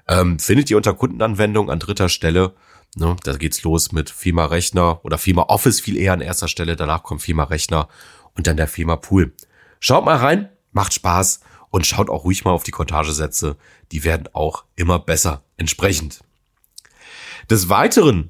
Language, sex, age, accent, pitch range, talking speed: German, male, 40-59, German, 85-115 Hz, 160 wpm